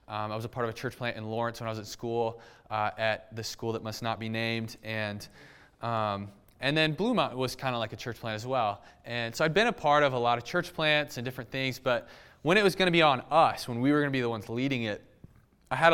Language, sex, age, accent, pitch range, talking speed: English, male, 20-39, American, 115-165 Hz, 280 wpm